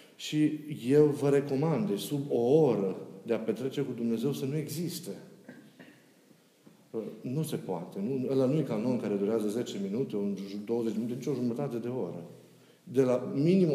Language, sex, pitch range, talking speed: Romanian, male, 135-170 Hz, 160 wpm